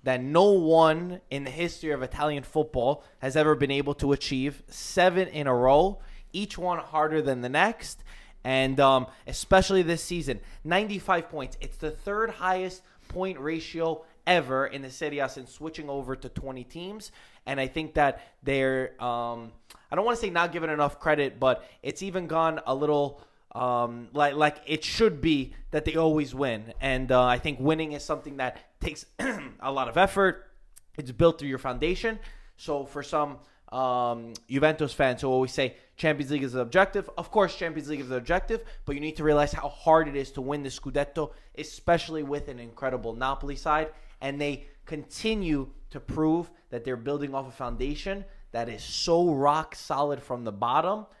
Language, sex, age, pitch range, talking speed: English, male, 20-39, 130-165 Hz, 185 wpm